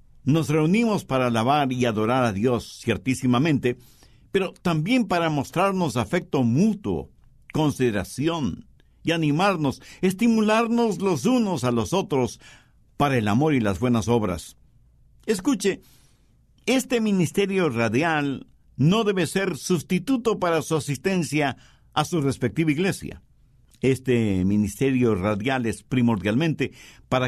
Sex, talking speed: male, 115 wpm